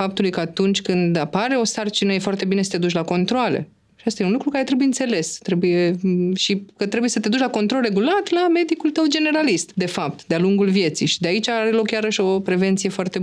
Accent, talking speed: native, 235 wpm